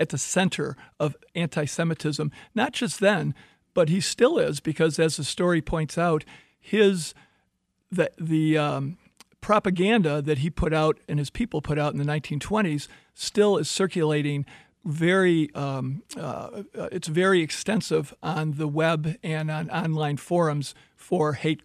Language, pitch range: English, 145-180 Hz